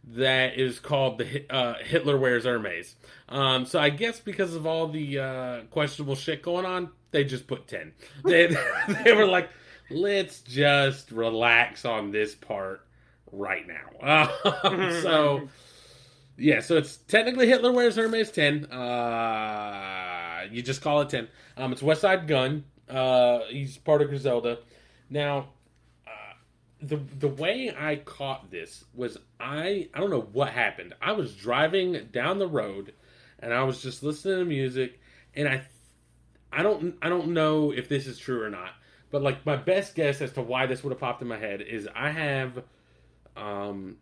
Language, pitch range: English, 120-150 Hz